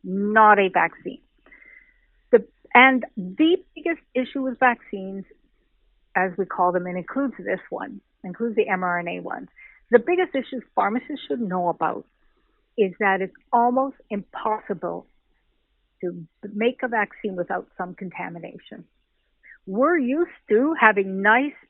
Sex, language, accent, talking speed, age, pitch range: female, English, American, 125 wpm, 50-69, 190-255 Hz